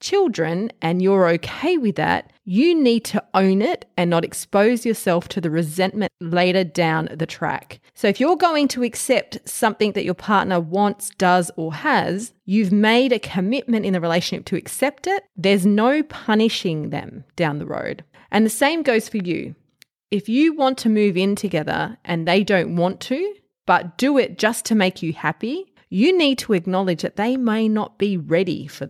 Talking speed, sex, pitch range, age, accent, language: 185 wpm, female, 170-230 Hz, 30-49, Australian, English